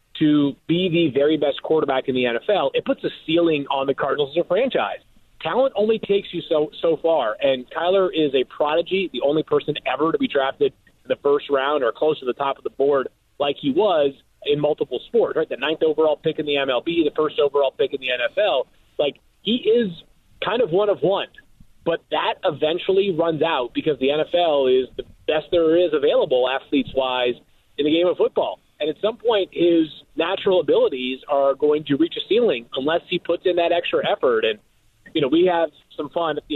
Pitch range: 145-190 Hz